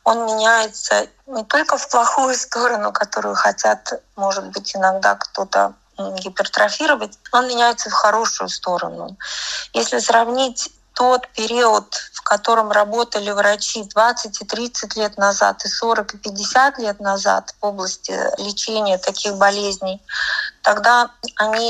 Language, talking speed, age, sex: Russian, 115 wpm, 30-49, female